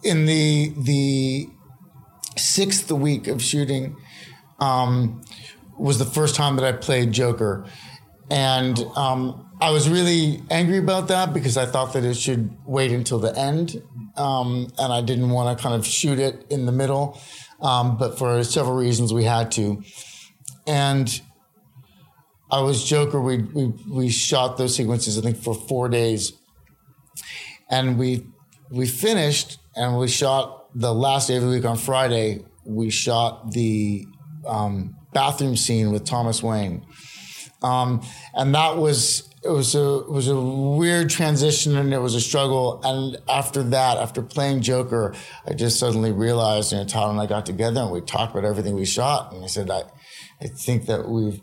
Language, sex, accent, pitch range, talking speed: English, male, American, 115-140 Hz, 165 wpm